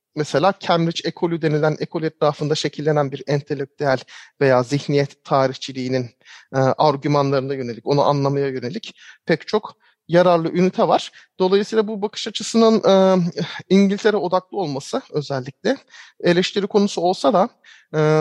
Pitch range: 150-190 Hz